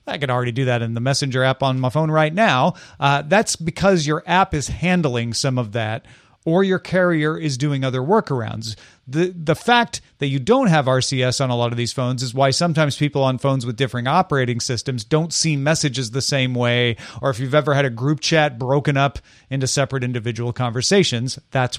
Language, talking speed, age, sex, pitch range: English, 210 wpm, 40-59, male, 130-165 Hz